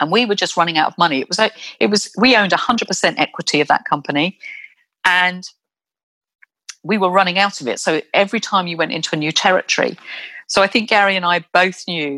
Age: 40-59